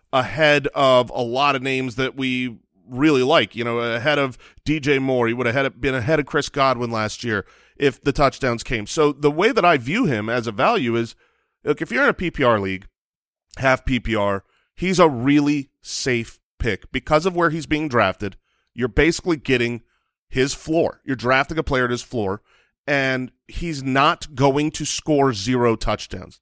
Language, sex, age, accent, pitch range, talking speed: English, male, 30-49, American, 125-170 Hz, 185 wpm